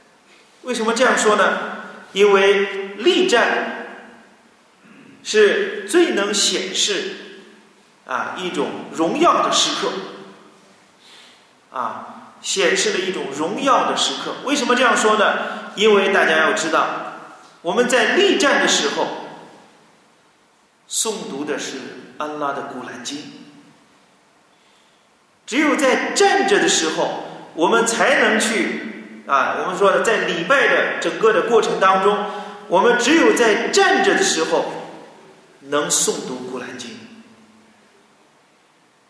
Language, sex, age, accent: Chinese, male, 40-59, native